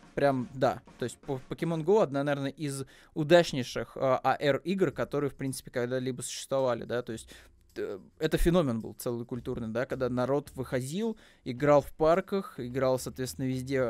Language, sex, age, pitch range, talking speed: Russian, male, 20-39, 125-150 Hz, 155 wpm